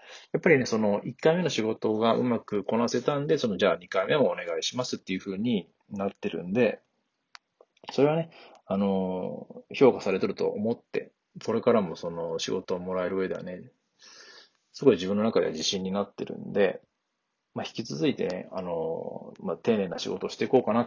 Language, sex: Japanese, male